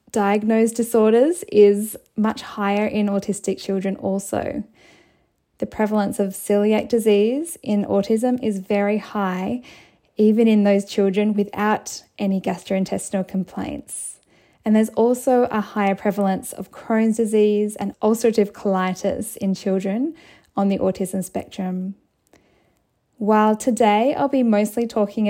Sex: female